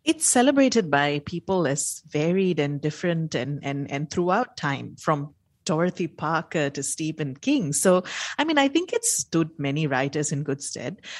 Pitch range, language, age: 155-205 Hz, English, 30-49